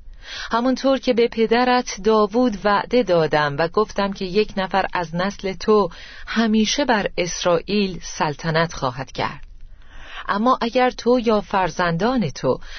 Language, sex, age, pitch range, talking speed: Persian, female, 40-59, 165-220 Hz, 125 wpm